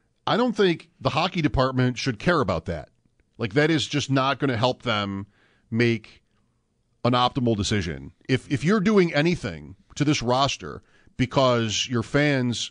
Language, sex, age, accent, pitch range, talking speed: English, male, 40-59, American, 110-155 Hz, 160 wpm